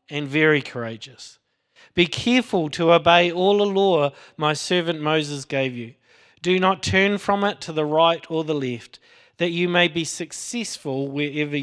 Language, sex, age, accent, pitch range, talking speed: English, male, 40-59, Australian, 135-185 Hz, 165 wpm